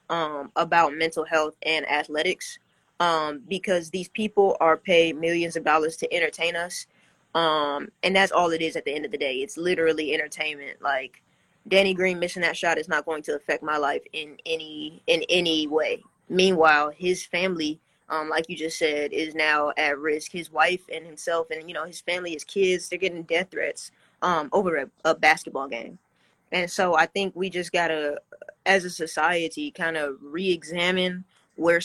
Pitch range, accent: 155-185 Hz, American